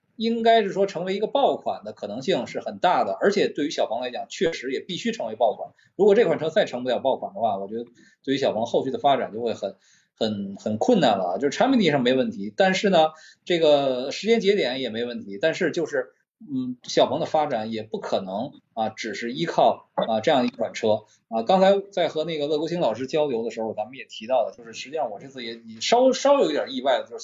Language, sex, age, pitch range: Chinese, male, 20-39, 125-210 Hz